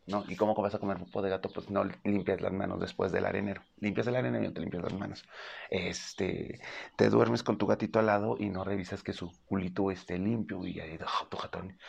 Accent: Mexican